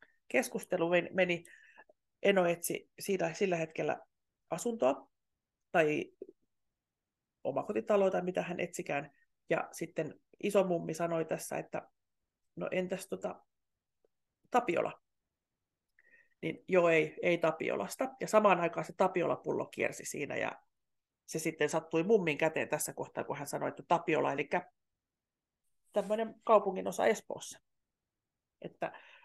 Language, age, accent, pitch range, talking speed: Finnish, 30-49, native, 160-210 Hz, 110 wpm